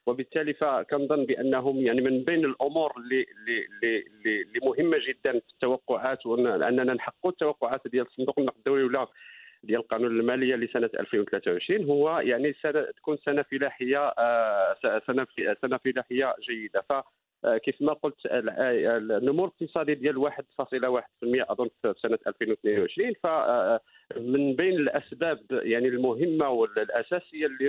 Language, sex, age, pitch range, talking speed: English, male, 50-69, 130-185 Hz, 125 wpm